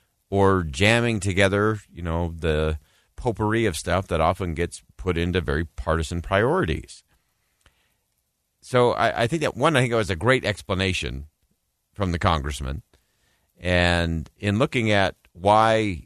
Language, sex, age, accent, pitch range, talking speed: English, male, 50-69, American, 80-110 Hz, 140 wpm